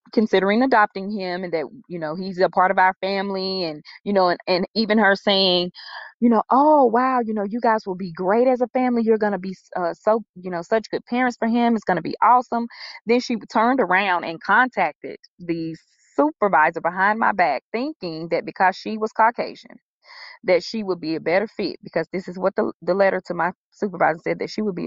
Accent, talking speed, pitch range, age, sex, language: American, 220 wpm, 170-220 Hz, 20-39, female, English